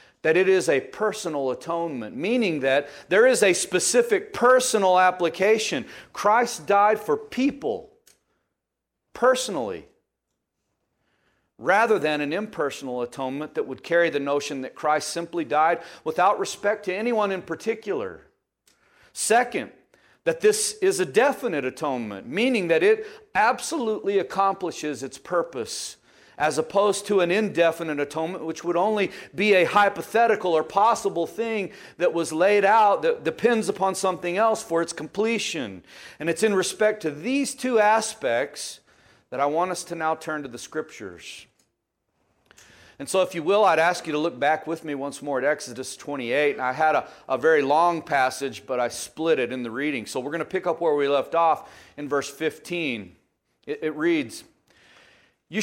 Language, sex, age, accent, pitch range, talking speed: English, male, 40-59, American, 155-220 Hz, 160 wpm